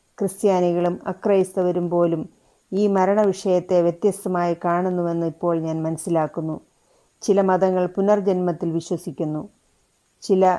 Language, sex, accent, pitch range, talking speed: Malayalam, female, native, 175-200 Hz, 90 wpm